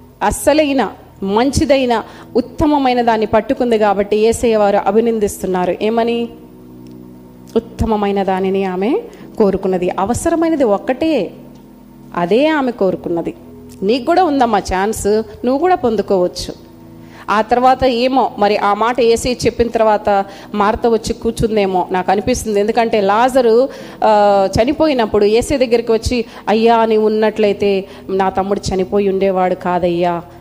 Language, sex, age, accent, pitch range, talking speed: Telugu, female, 30-49, native, 195-255 Hz, 105 wpm